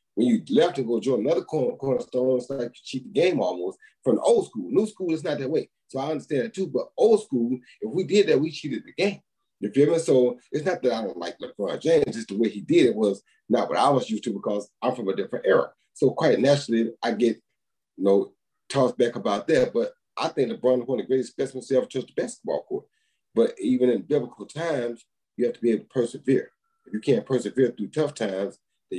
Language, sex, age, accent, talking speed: English, male, 30-49, American, 255 wpm